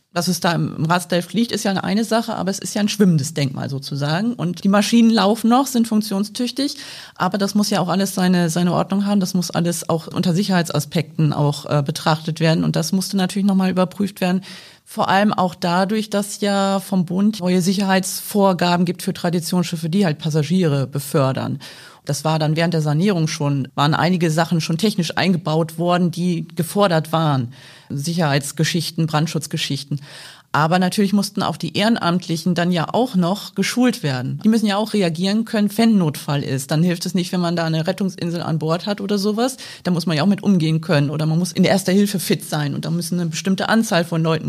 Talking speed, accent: 200 wpm, German